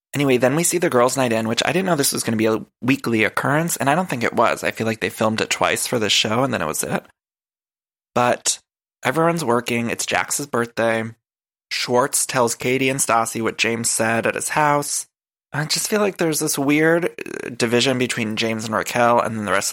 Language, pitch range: English, 110-140 Hz